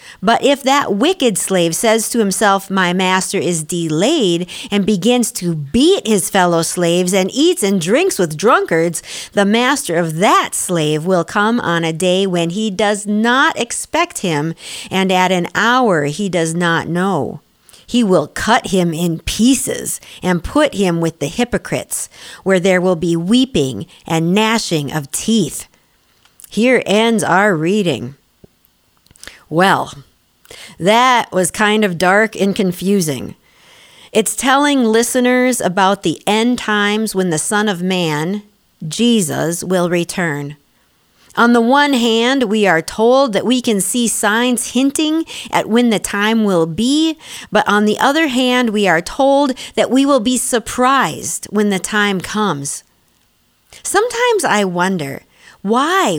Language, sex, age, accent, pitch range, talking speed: English, female, 50-69, American, 175-240 Hz, 145 wpm